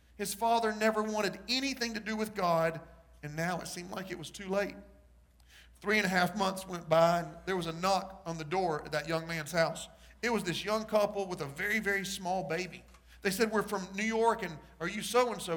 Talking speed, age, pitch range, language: 225 wpm, 40-59, 165-210 Hz, English